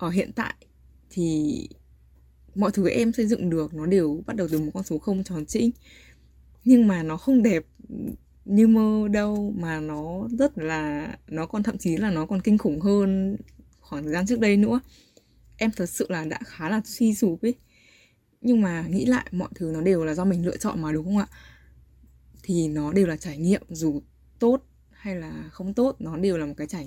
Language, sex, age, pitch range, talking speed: Vietnamese, female, 20-39, 150-210 Hz, 210 wpm